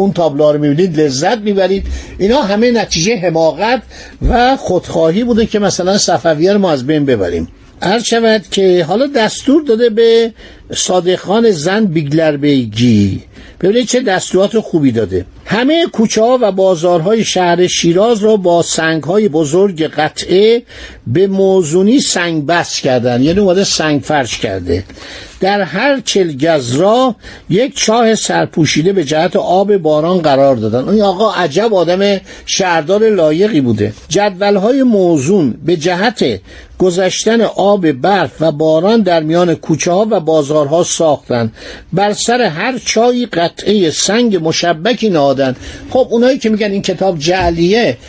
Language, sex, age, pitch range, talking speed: Persian, male, 60-79, 160-220 Hz, 140 wpm